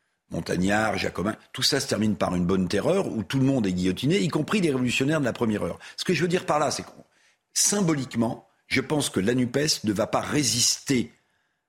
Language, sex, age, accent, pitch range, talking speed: French, male, 50-69, French, 115-150 Hz, 215 wpm